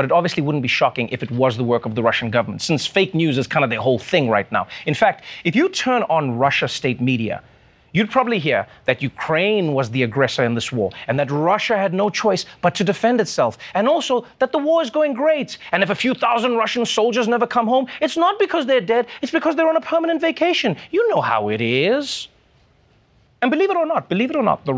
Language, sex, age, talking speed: English, male, 30-49, 245 wpm